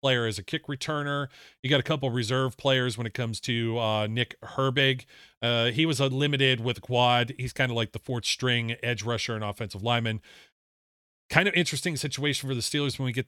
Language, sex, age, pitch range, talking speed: English, male, 40-59, 110-130 Hz, 215 wpm